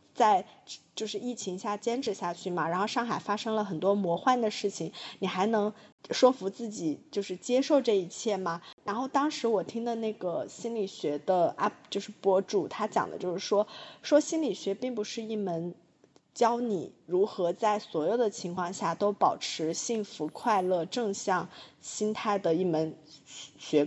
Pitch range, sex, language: 185-245 Hz, female, Chinese